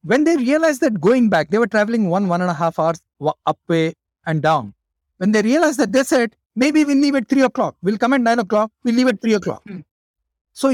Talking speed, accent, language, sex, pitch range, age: 230 wpm, Indian, English, male, 170-250 Hz, 50-69